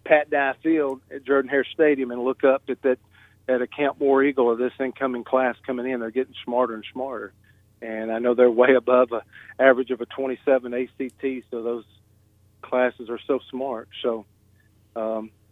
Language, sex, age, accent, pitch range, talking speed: English, male, 40-59, American, 110-140 Hz, 185 wpm